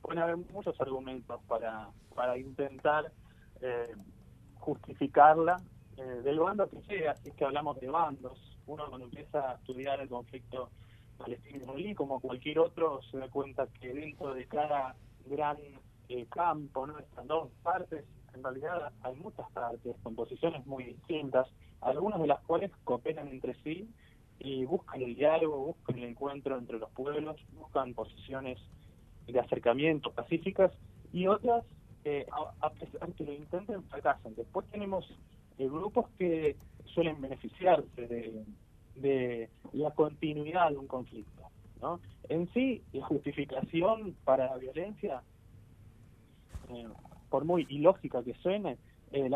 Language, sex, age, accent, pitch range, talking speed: Spanish, male, 30-49, Argentinian, 120-160 Hz, 140 wpm